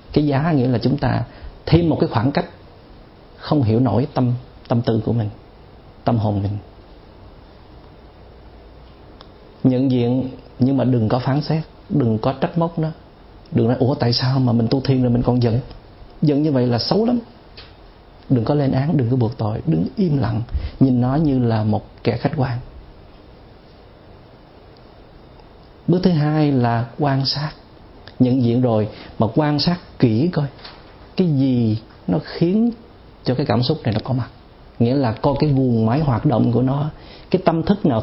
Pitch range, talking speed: 110-145 Hz, 180 wpm